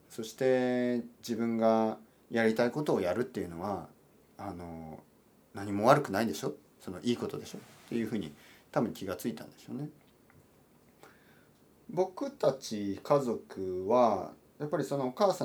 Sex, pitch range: male, 95-145 Hz